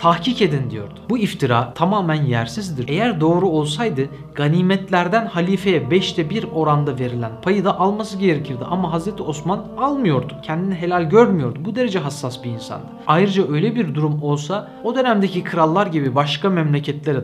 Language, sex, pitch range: Turkish, male, 140-195 Hz